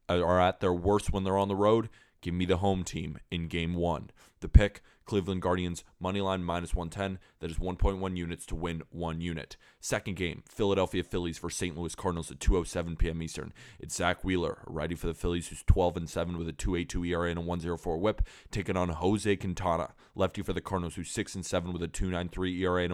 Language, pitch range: English, 85-105 Hz